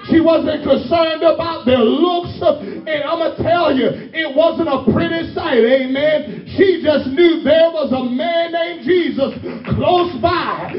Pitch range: 305-355 Hz